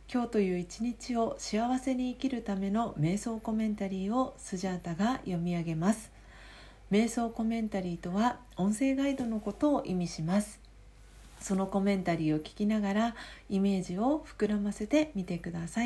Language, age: Japanese, 40-59